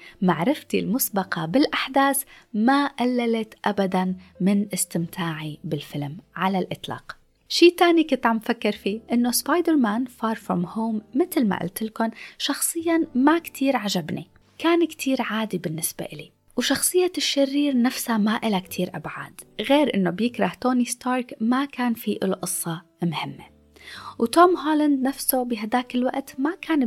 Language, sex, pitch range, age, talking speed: Arabic, female, 190-270 Hz, 20-39, 135 wpm